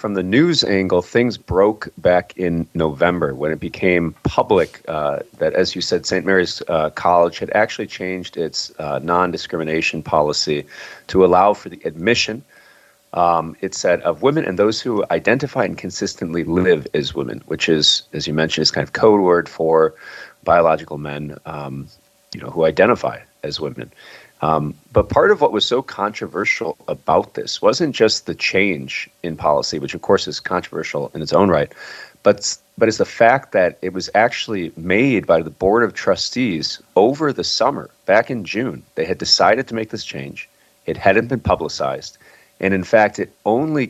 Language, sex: English, male